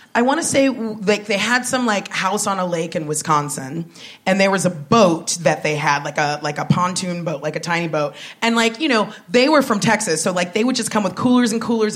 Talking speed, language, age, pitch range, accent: 255 wpm, English, 30-49, 170-225 Hz, American